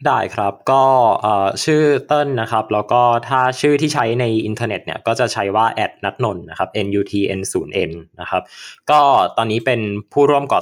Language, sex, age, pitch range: Thai, male, 20-39, 100-125 Hz